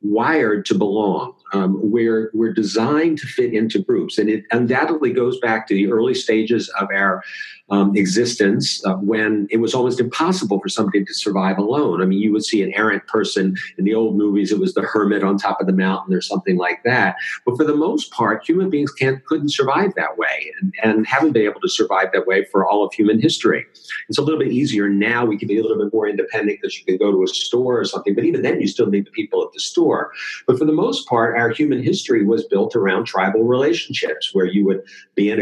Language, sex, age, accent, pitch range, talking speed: English, male, 50-69, American, 100-170 Hz, 235 wpm